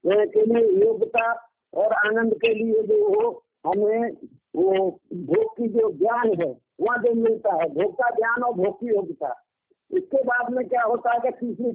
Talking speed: 165 wpm